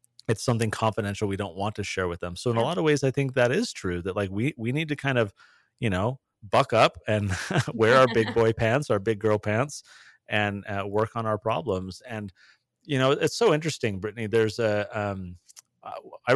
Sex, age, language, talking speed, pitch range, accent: male, 30-49, English, 220 wpm, 100-130 Hz, American